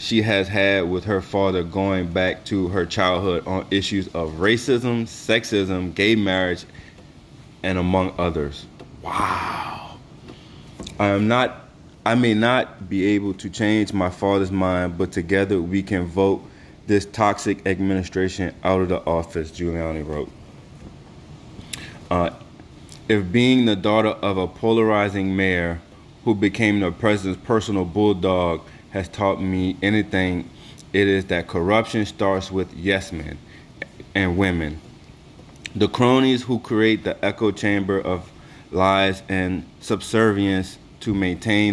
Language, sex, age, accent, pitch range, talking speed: English, male, 20-39, American, 90-105 Hz, 130 wpm